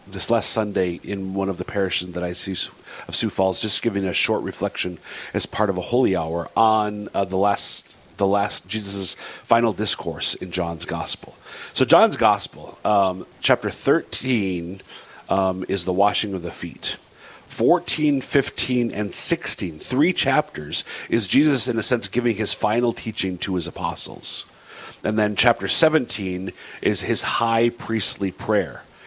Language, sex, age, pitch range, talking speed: English, male, 40-59, 95-115 Hz, 160 wpm